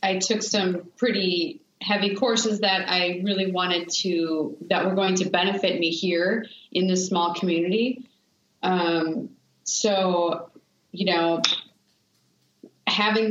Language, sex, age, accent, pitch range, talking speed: English, female, 30-49, American, 170-200 Hz, 120 wpm